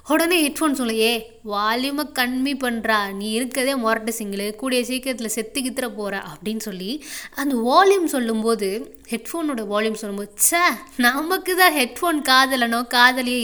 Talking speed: 135 wpm